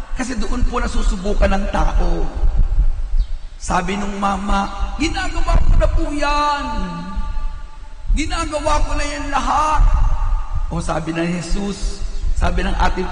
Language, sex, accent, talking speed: Filipino, male, native, 120 wpm